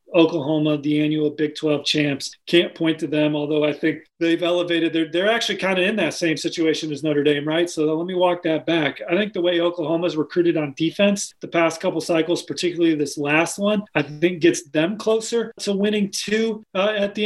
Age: 30-49